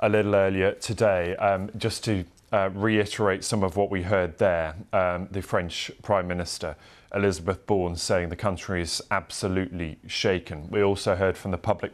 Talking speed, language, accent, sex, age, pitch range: 170 wpm, English, British, male, 20-39, 90-100 Hz